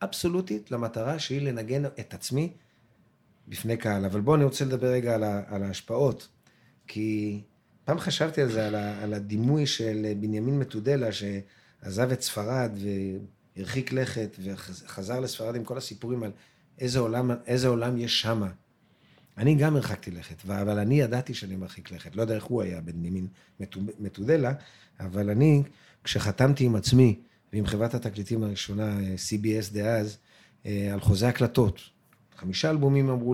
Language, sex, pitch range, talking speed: Hebrew, male, 105-130 Hz, 140 wpm